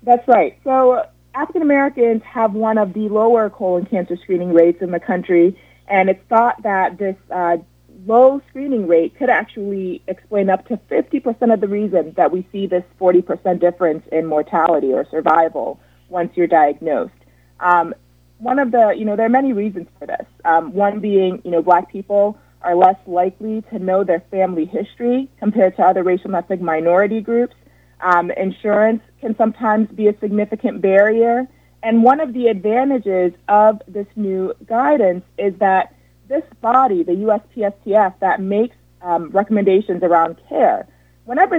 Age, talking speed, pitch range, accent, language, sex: 30-49, 165 wpm, 175-220 Hz, American, English, female